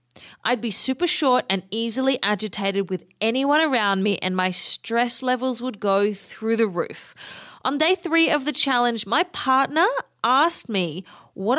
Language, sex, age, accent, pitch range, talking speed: English, female, 30-49, Australian, 200-280 Hz, 160 wpm